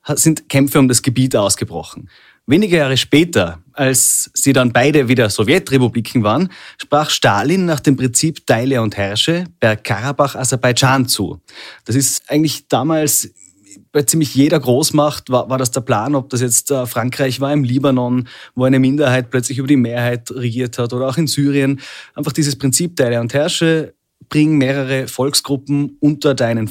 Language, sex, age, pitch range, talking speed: German, male, 30-49, 125-145 Hz, 160 wpm